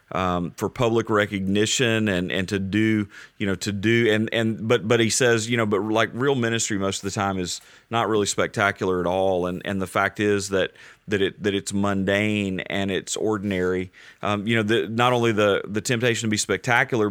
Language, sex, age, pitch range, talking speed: English, male, 30-49, 95-110 Hz, 210 wpm